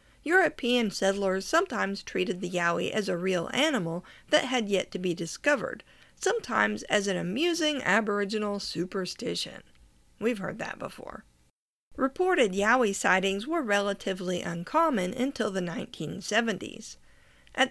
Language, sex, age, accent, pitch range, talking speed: English, female, 50-69, American, 185-260 Hz, 120 wpm